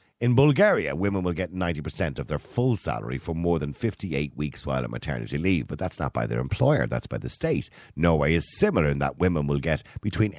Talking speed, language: 220 wpm, English